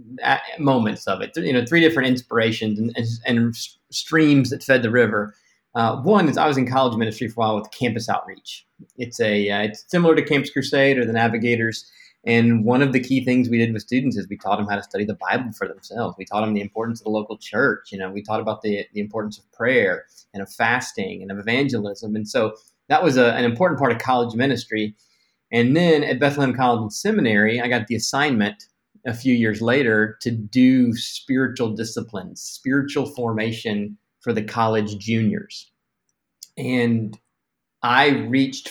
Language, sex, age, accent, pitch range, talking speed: English, male, 30-49, American, 110-130 Hz, 195 wpm